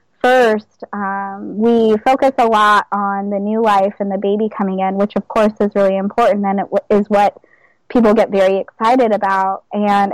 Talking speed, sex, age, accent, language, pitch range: 180 wpm, female, 20-39, American, English, 195-220 Hz